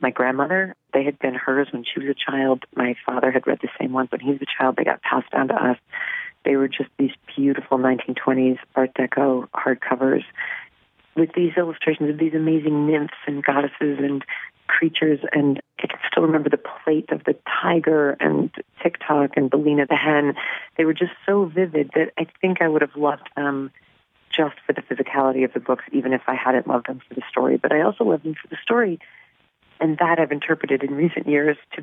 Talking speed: 205 wpm